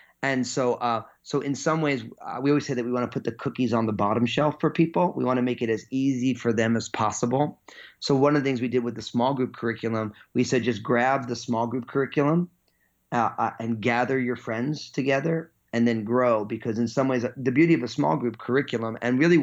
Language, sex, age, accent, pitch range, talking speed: English, male, 30-49, American, 110-130 Hz, 240 wpm